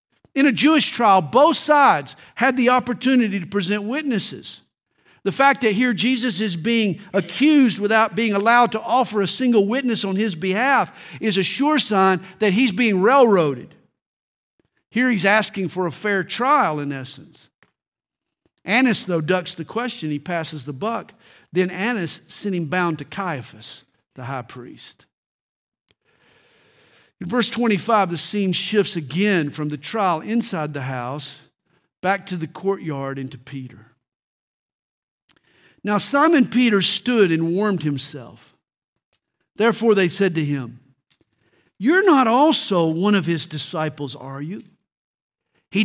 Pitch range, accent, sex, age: 160-220 Hz, American, male, 50-69